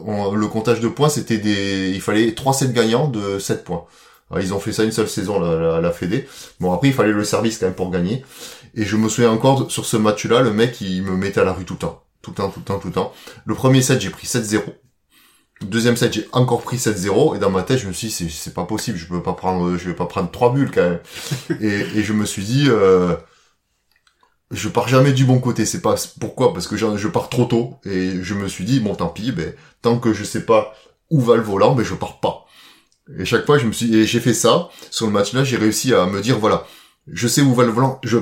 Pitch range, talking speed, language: 100-120 Hz, 275 wpm, French